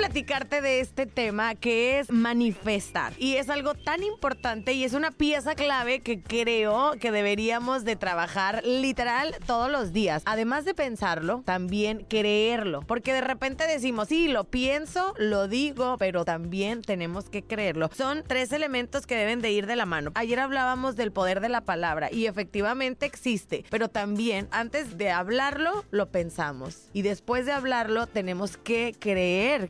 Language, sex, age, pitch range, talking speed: Spanish, female, 20-39, 200-260 Hz, 160 wpm